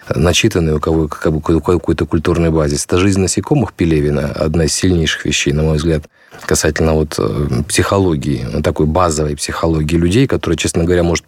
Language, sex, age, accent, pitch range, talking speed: Russian, male, 30-49, native, 80-90 Hz, 145 wpm